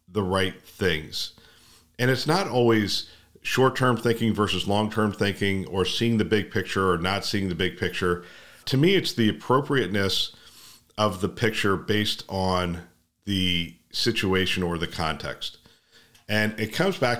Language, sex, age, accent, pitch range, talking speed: English, male, 40-59, American, 90-110 Hz, 145 wpm